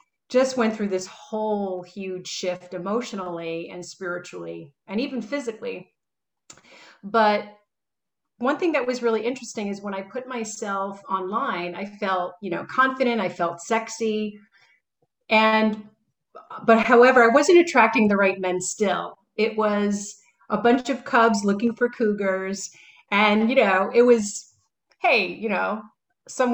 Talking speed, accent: 140 wpm, American